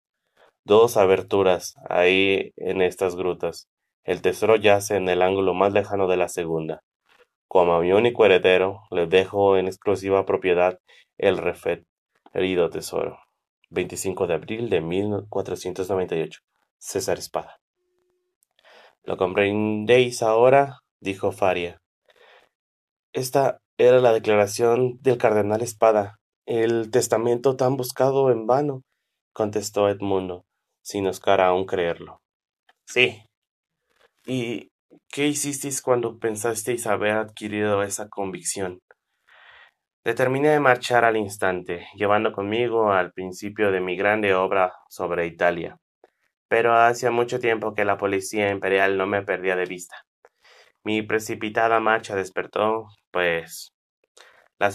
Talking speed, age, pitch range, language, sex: 115 wpm, 30-49, 95-115 Hz, Spanish, male